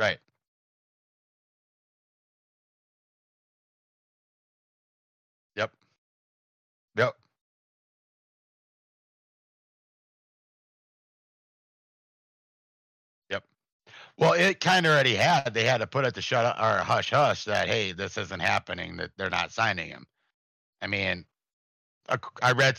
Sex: male